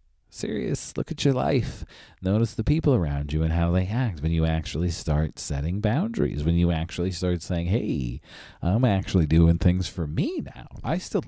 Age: 40-59